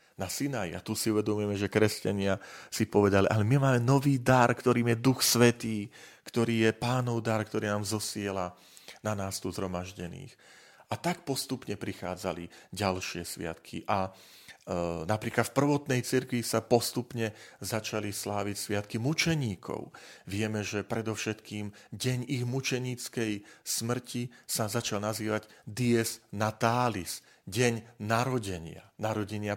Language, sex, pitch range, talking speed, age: Slovak, male, 95-120 Hz, 130 wpm, 40-59